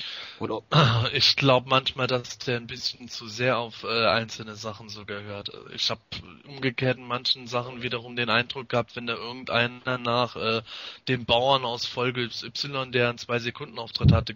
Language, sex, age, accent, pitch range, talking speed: German, male, 20-39, German, 115-130 Hz, 170 wpm